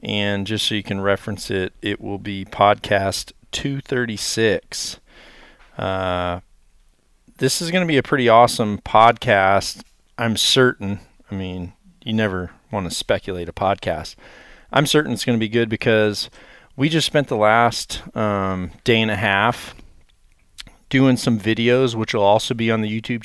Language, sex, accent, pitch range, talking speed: English, male, American, 100-125 Hz, 155 wpm